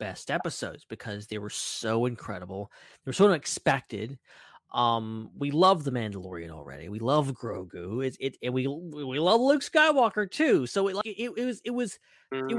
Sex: male